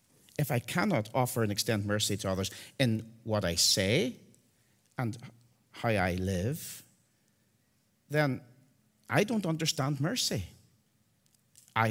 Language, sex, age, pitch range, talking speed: English, male, 50-69, 105-130 Hz, 115 wpm